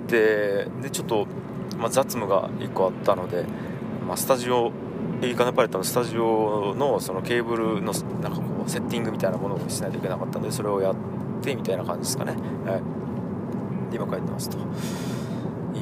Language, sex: Japanese, male